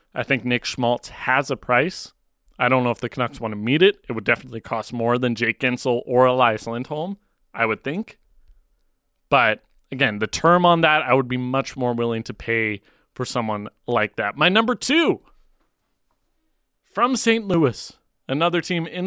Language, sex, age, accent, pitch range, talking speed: English, male, 30-49, American, 120-155 Hz, 185 wpm